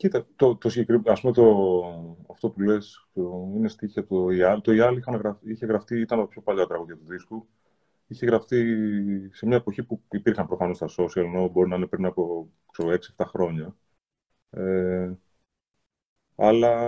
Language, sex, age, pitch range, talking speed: Greek, male, 30-49, 95-130 Hz, 165 wpm